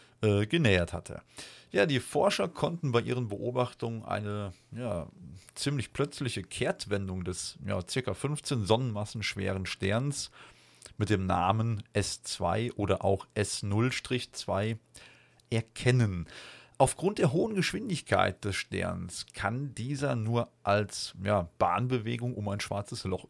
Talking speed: 115 wpm